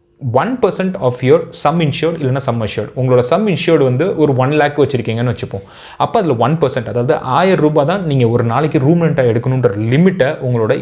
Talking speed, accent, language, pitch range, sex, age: 175 wpm, native, Tamil, 120-160 Hz, male, 20-39